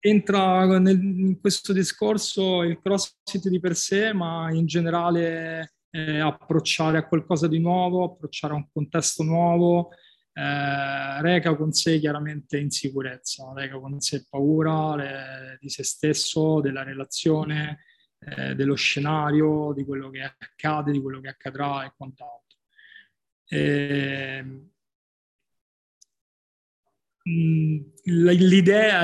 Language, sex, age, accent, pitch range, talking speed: Italian, male, 20-39, native, 140-165 Hz, 110 wpm